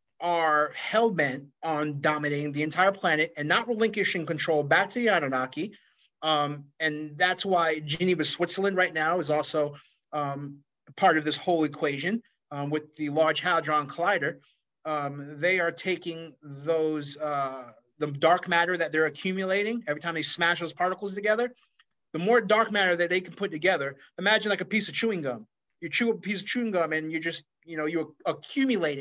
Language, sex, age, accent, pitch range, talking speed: English, male, 30-49, American, 155-210 Hz, 180 wpm